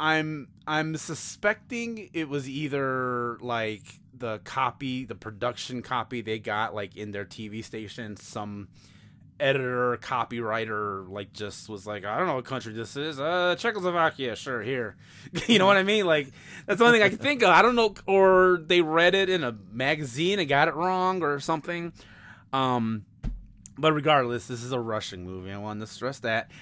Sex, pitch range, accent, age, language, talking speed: male, 115-180 Hz, American, 20-39, English, 185 wpm